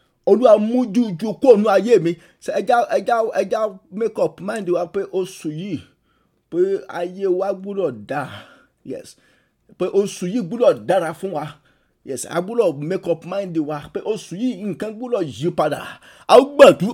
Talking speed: 160 wpm